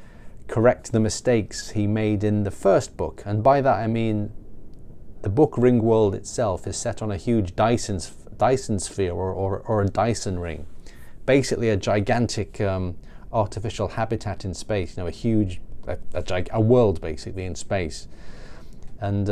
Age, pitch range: 30-49, 95-115 Hz